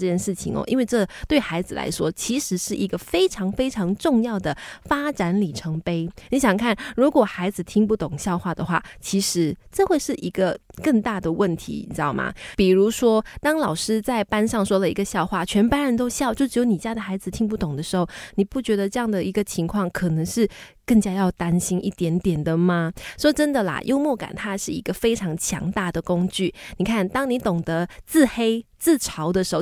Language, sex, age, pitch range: Chinese, female, 20-39, 180-245 Hz